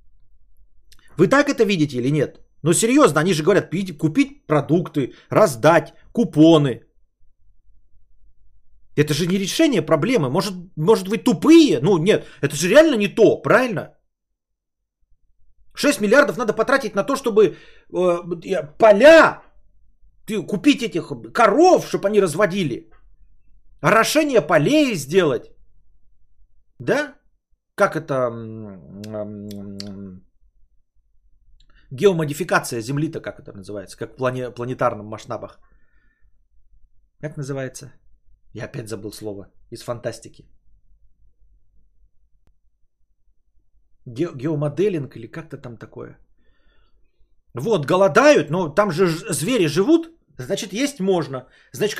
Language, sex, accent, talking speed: Russian, male, native, 105 wpm